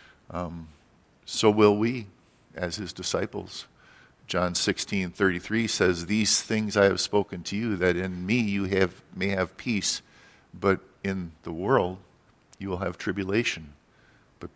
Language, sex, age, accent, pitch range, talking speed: English, male, 50-69, American, 85-100 Hz, 150 wpm